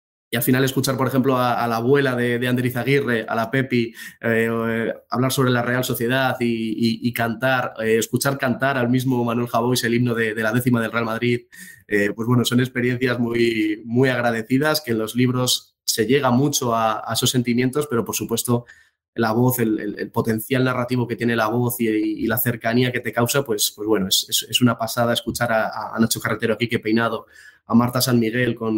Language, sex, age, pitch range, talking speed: Spanish, male, 20-39, 115-125 Hz, 215 wpm